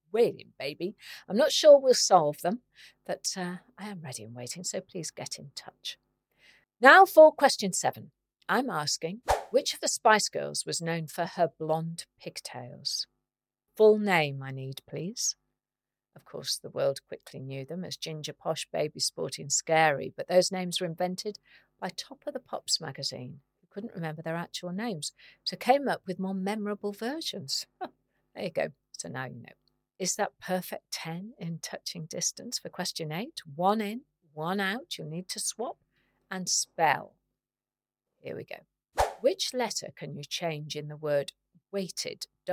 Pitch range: 155-210 Hz